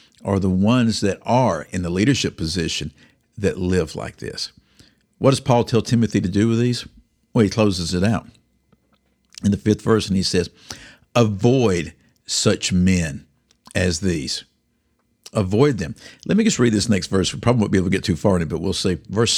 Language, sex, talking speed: English, male, 195 wpm